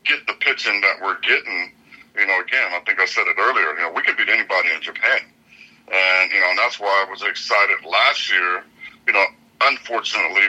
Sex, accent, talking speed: male, American, 205 wpm